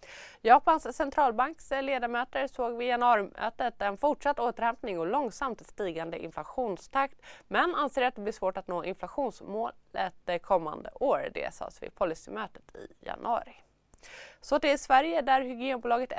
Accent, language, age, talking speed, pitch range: native, Swedish, 20-39, 130 wpm, 195-260 Hz